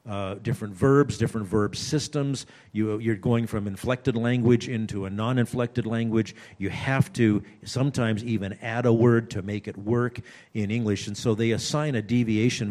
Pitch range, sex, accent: 100-120 Hz, male, American